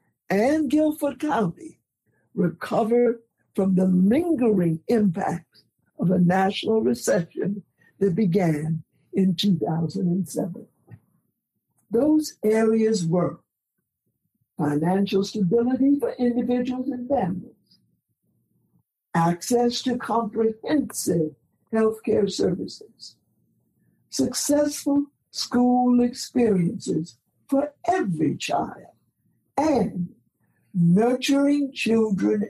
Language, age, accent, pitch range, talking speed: English, 60-79, American, 180-250 Hz, 75 wpm